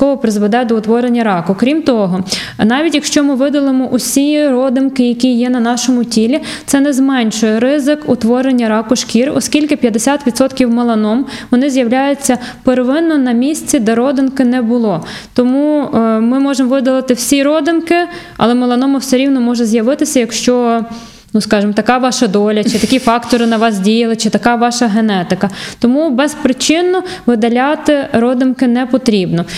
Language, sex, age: Ukrainian, female, 20-39